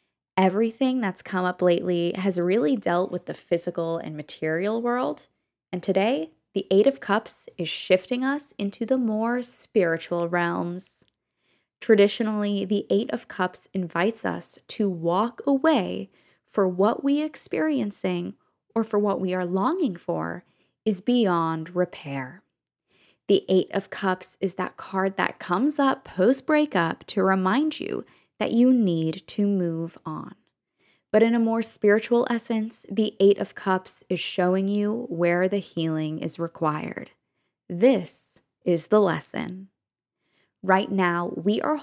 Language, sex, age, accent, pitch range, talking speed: English, female, 10-29, American, 180-225 Hz, 140 wpm